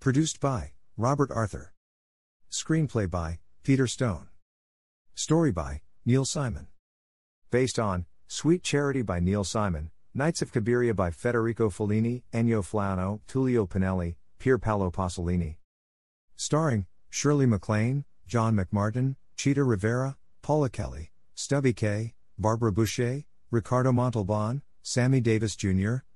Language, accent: English, American